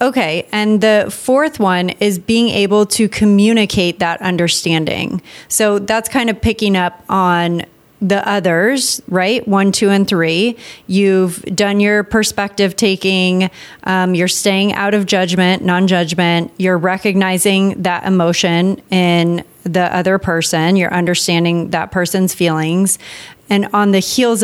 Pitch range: 180-205 Hz